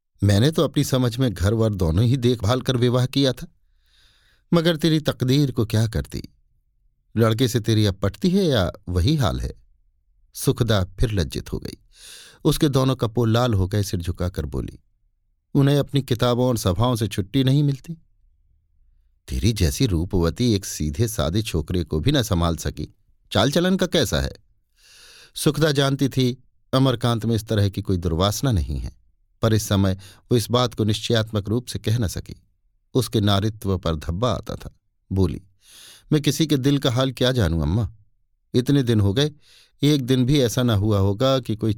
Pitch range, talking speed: 95-135 Hz, 175 wpm